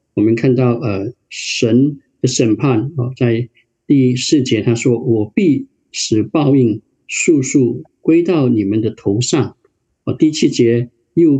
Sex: male